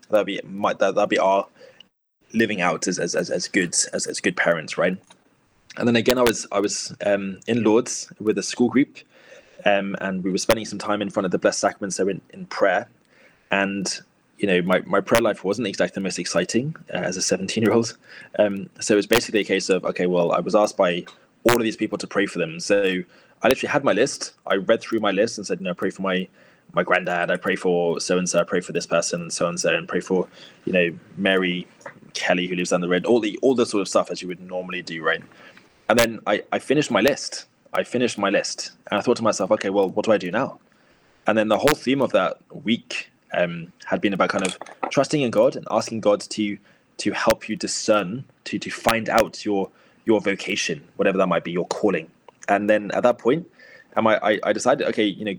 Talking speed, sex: 235 wpm, male